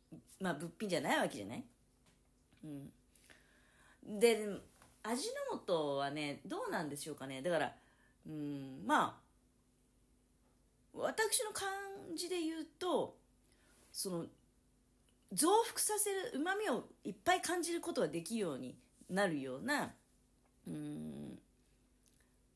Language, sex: Japanese, female